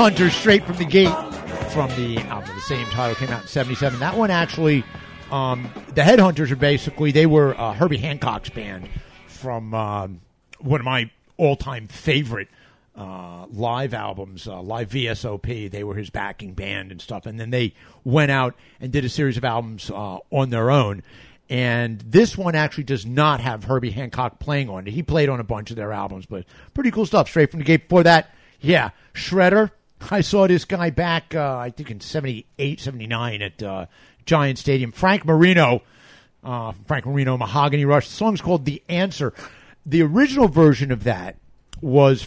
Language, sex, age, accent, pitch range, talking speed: English, male, 50-69, American, 115-155 Hz, 180 wpm